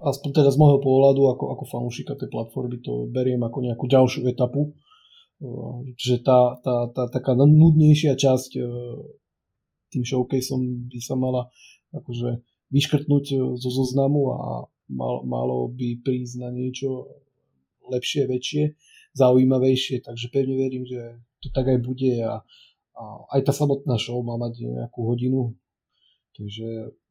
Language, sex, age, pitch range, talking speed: Slovak, male, 30-49, 120-140 Hz, 140 wpm